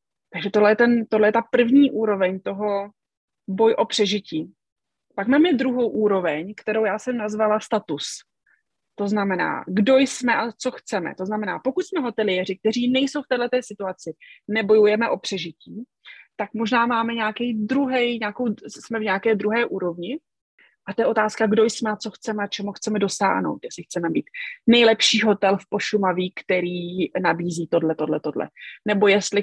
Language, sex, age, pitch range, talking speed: Czech, female, 30-49, 195-230 Hz, 160 wpm